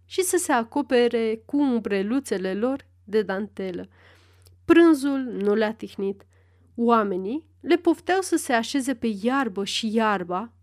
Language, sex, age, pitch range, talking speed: Romanian, female, 30-49, 195-275 Hz, 130 wpm